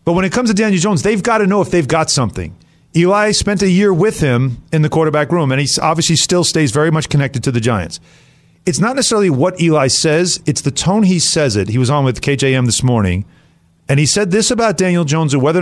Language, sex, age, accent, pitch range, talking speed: English, male, 40-59, American, 110-150 Hz, 245 wpm